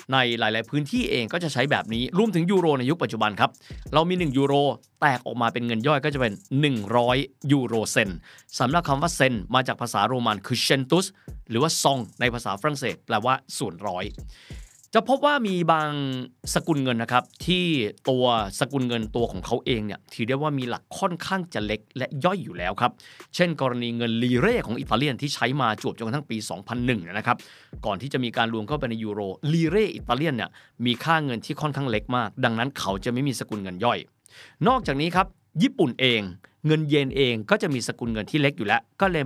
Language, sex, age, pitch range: Thai, male, 20-39, 115-160 Hz